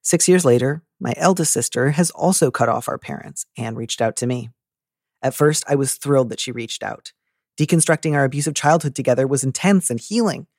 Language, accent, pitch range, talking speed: English, American, 115-150 Hz, 200 wpm